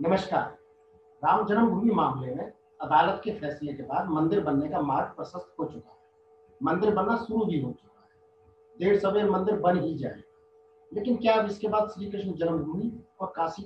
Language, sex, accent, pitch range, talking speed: Hindi, male, native, 150-210 Hz, 170 wpm